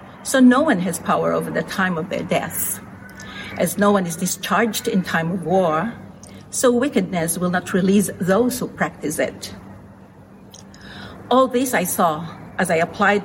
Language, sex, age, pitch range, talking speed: English, female, 50-69, 175-220 Hz, 165 wpm